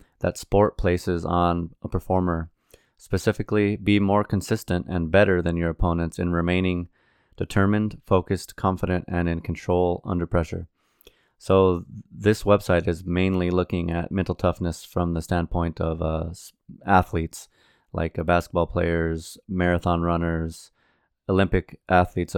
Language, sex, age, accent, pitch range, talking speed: English, male, 30-49, American, 85-95 Hz, 130 wpm